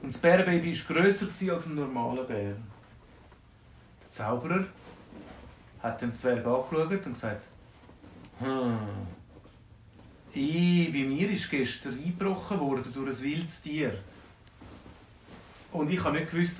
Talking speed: 120 wpm